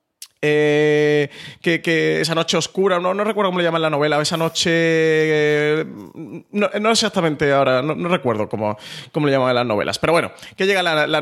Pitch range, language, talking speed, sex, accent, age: 140-170 Hz, Spanish, 195 wpm, male, Spanish, 20-39